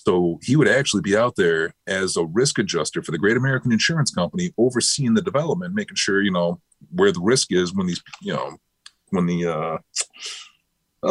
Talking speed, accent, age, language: 190 wpm, American, 30-49, English